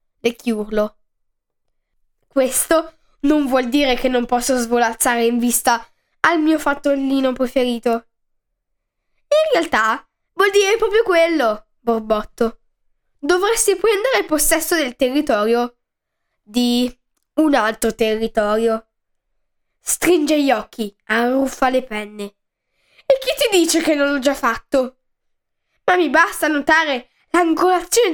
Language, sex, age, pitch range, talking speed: Italian, female, 10-29, 230-315 Hz, 110 wpm